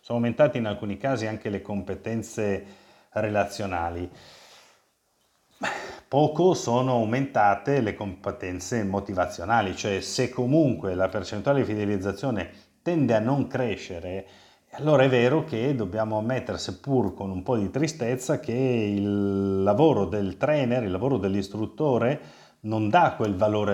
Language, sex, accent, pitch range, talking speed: Italian, male, native, 95-120 Hz, 125 wpm